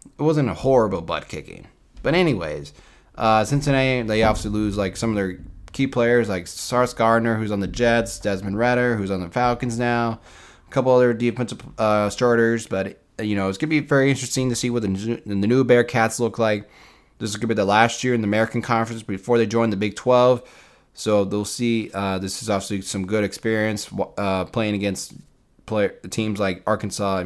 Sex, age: male, 20-39